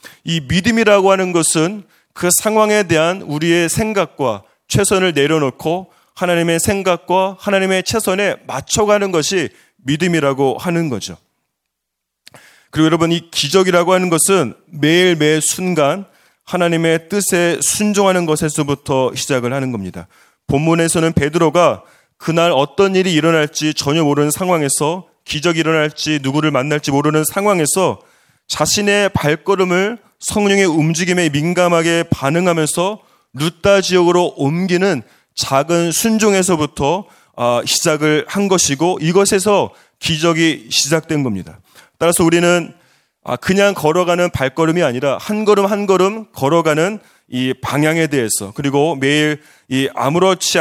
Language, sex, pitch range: Korean, male, 150-185 Hz